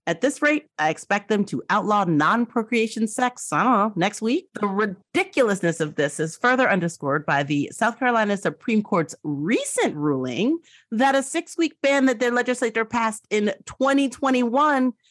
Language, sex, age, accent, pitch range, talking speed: English, female, 40-59, American, 170-250 Hz, 155 wpm